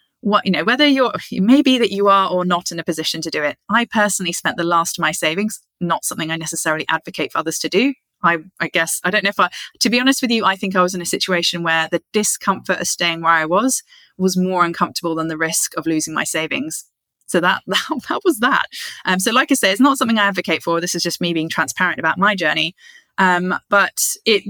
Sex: female